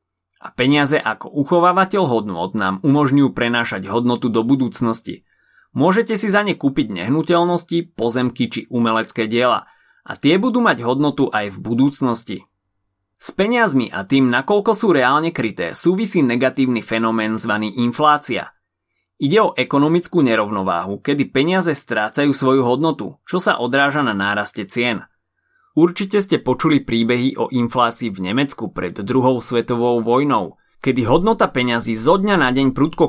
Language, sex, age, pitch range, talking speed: Slovak, male, 30-49, 115-165 Hz, 140 wpm